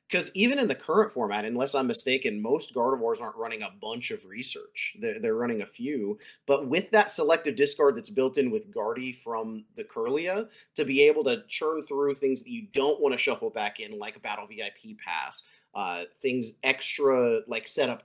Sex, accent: male, American